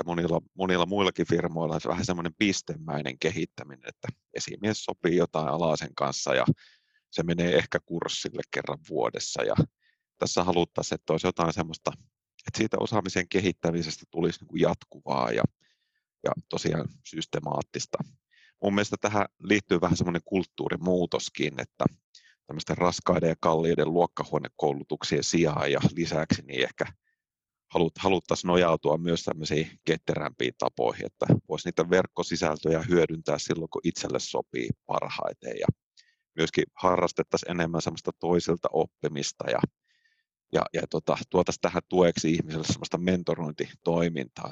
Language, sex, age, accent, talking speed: Finnish, male, 30-49, native, 120 wpm